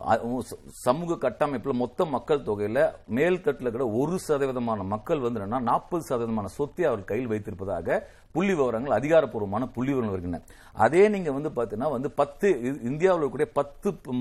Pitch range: 125-170 Hz